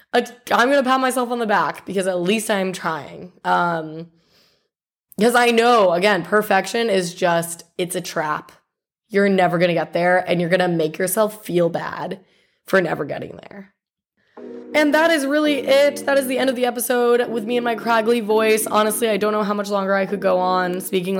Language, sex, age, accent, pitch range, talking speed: English, female, 20-39, American, 185-220 Hz, 205 wpm